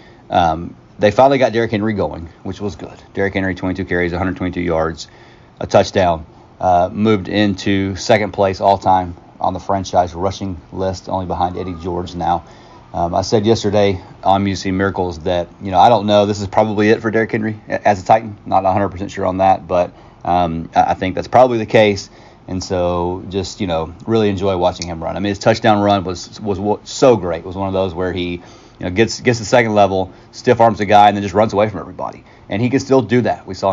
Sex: male